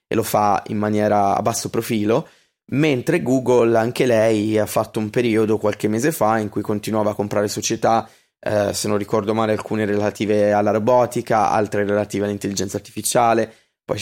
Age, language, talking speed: 20-39, Italian, 165 wpm